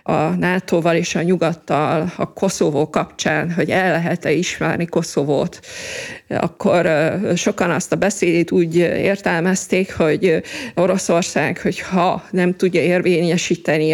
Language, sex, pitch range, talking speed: Hungarian, female, 165-190 Hz, 115 wpm